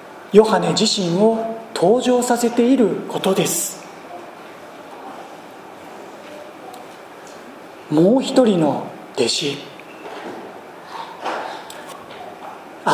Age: 40-59